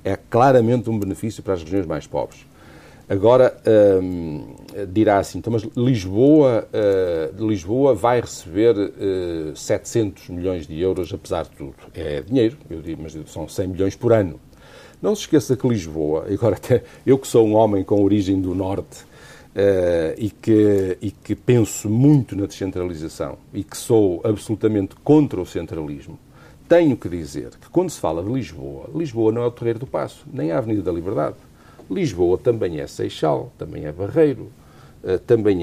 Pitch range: 95-150 Hz